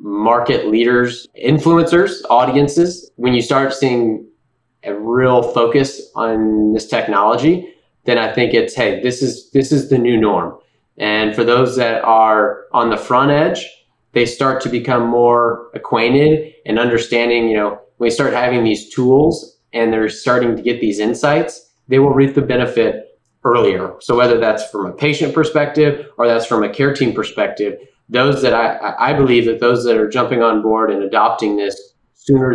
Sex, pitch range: male, 115-135 Hz